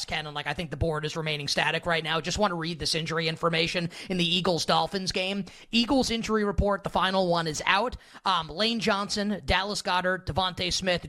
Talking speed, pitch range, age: 205 wpm, 160-205 Hz, 30-49